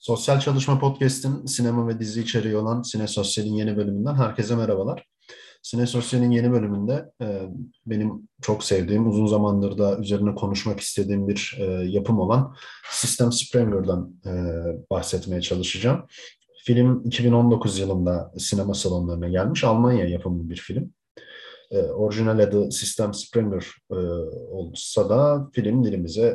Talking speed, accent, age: 120 wpm, native, 40-59